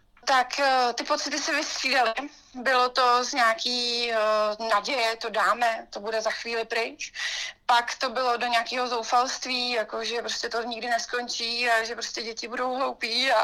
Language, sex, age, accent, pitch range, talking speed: Czech, female, 30-49, native, 235-275 Hz, 165 wpm